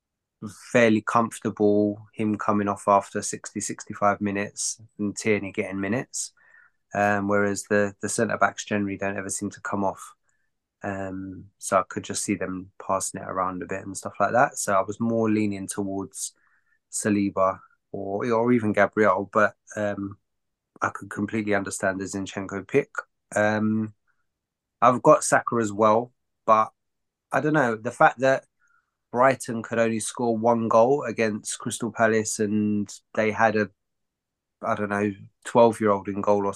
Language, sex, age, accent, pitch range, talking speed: English, male, 20-39, British, 100-115 Hz, 155 wpm